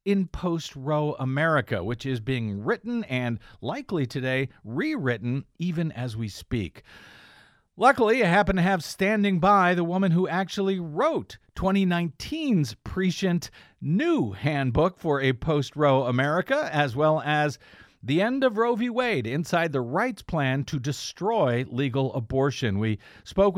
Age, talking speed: 50-69, 135 wpm